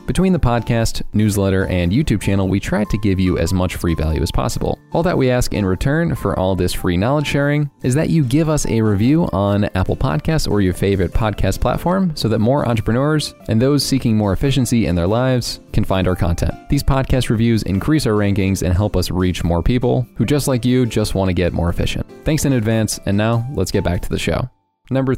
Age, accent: 20-39, American